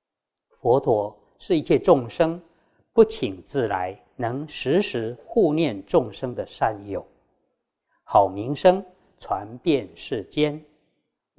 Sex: male